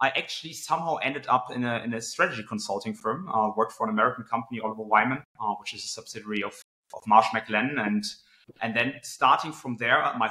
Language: English